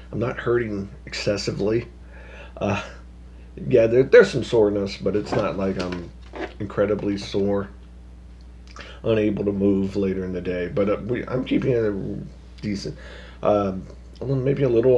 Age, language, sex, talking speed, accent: 40-59, English, male, 135 wpm, American